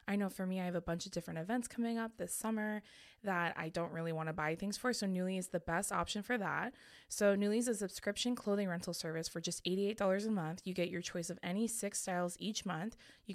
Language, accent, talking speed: English, American, 250 wpm